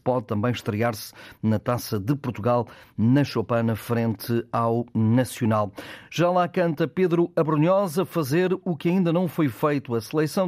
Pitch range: 120-155 Hz